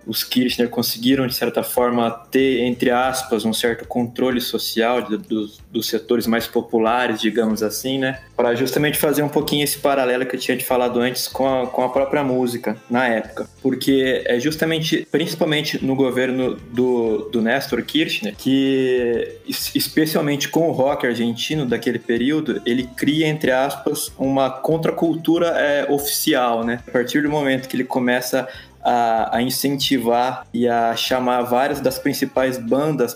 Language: Portuguese